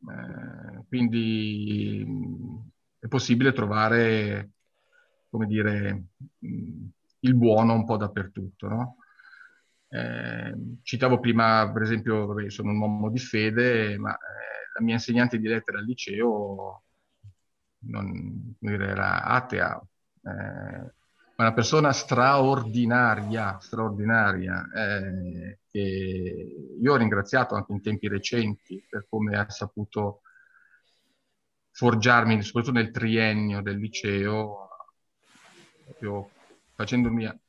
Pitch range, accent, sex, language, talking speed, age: 100-120 Hz, native, male, Italian, 100 wpm, 40-59